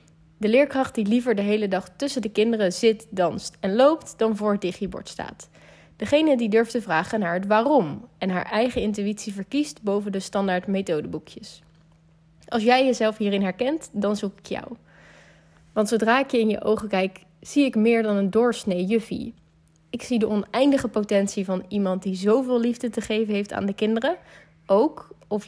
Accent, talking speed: Dutch, 185 wpm